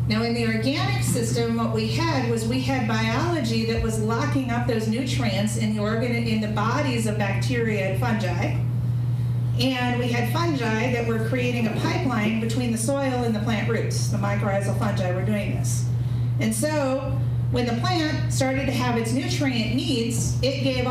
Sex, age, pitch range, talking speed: female, 40-59, 115-125 Hz, 180 wpm